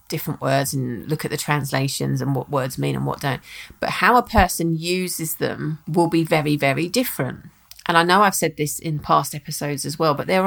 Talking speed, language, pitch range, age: 220 wpm, English, 155-185 Hz, 30-49